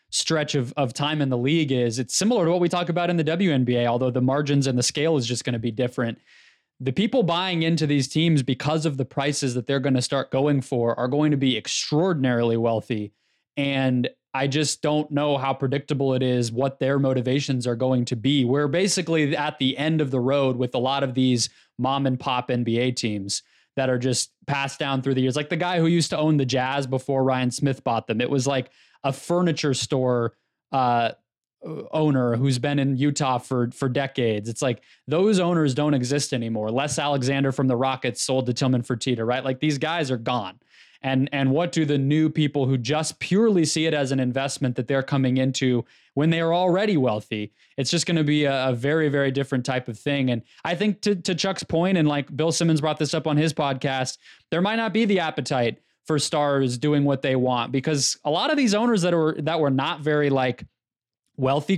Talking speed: 220 wpm